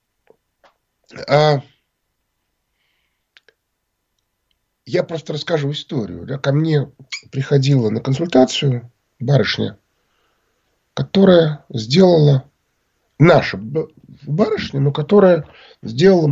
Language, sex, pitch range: Russian, male, 125-160 Hz